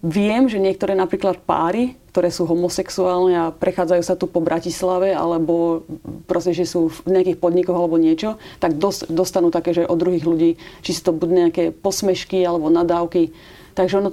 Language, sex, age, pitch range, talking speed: Slovak, female, 30-49, 175-195 Hz, 165 wpm